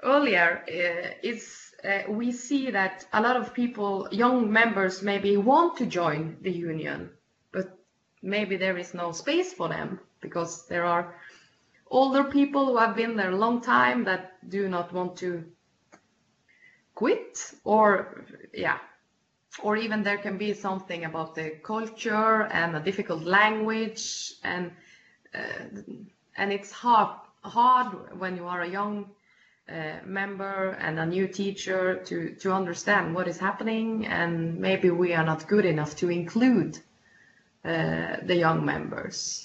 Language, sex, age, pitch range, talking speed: English, female, 20-39, 180-235 Hz, 145 wpm